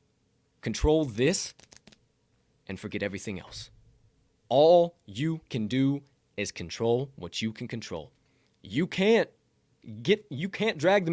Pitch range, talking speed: 125-185 Hz, 125 wpm